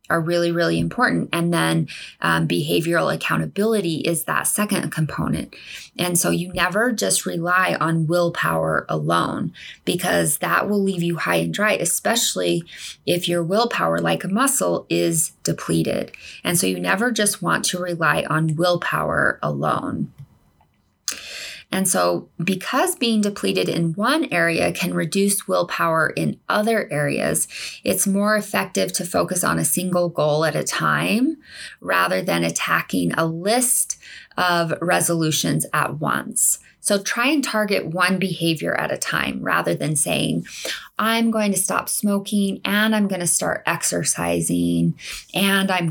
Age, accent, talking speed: 20-39, American, 145 wpm